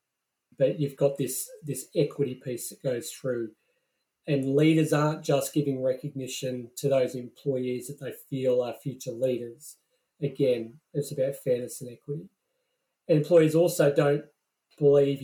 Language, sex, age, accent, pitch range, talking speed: English, male, 40-59, Australian, 130-155 Hz, 140 wpm